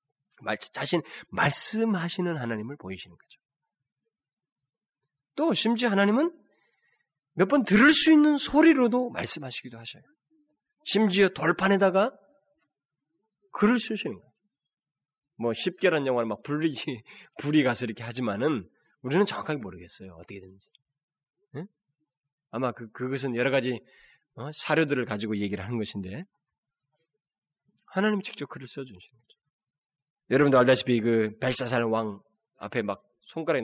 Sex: male